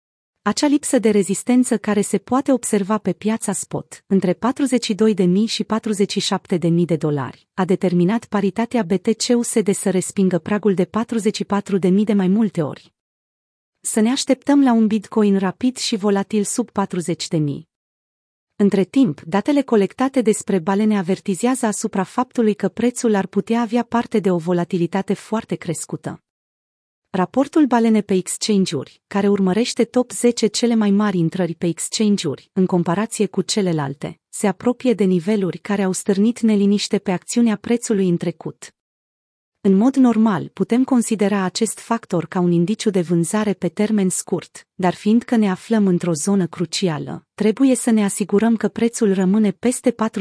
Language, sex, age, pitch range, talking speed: Romanian, female, 30-49, 185-225 Hz, 150 wpm